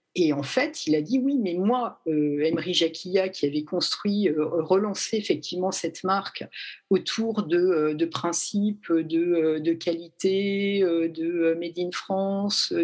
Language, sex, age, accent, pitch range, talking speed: French, female, 50-69, French, 160-210 Hz, 150 wpm